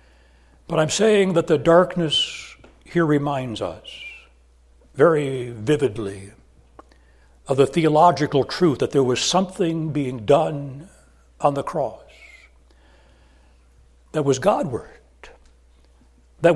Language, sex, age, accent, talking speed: English, male, 60-79, American, 100 wpm